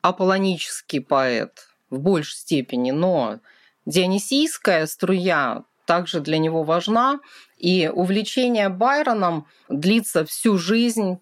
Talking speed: 95 wpm